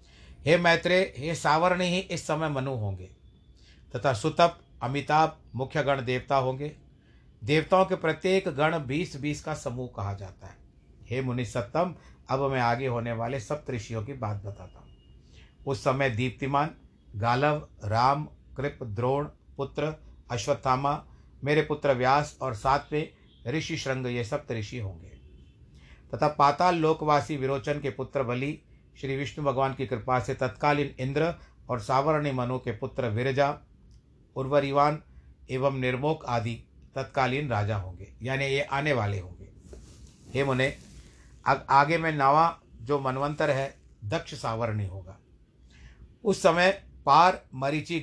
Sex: male